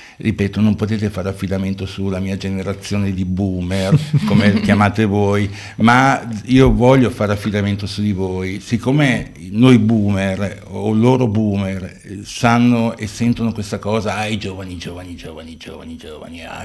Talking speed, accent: 145 wpm, native